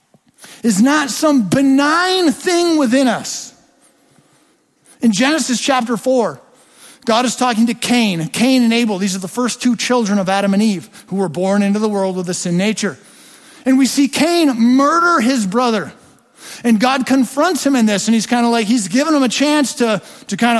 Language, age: English, 50-69